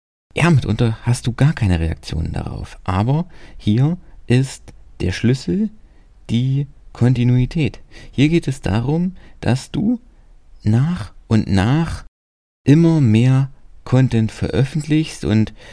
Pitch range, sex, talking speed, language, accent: 95-140 Hz, male, 110 wpm, German, German